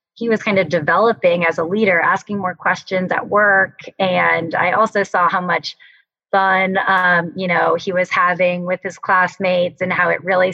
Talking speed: 190 wpm